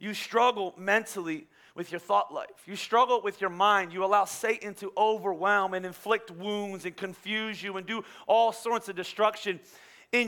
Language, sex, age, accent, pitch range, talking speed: English, male, 30-49, American, 210-250 Hz, 175 wpm